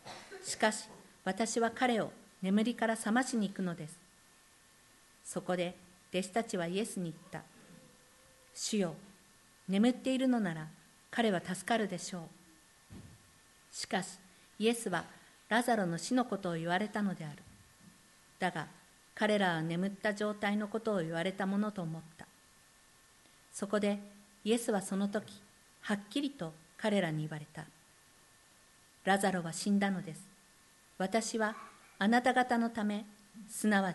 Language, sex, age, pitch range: Japanese, female, 50-69, 180-220 Hz